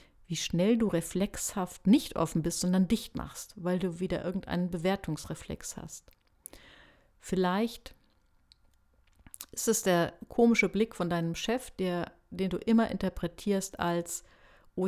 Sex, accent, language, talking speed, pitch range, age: female, German, German, 125 wpm, 155-200 Hz, 50-69